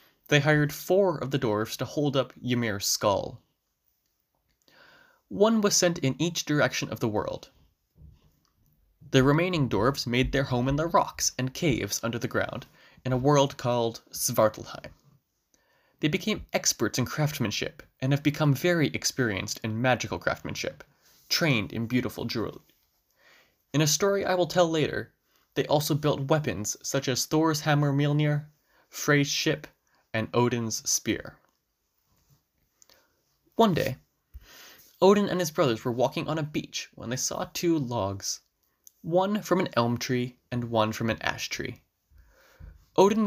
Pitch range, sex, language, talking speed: 120-160 Hz, male, English, 145 wpm